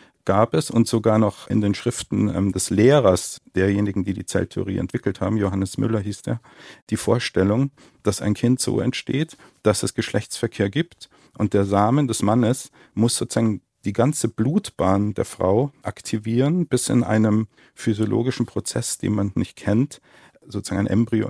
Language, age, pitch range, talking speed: German, 50-69, 100-120 Hz, 160 wpm